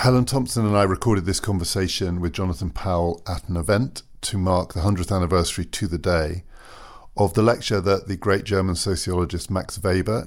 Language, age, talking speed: English, 50-69, 180 wpm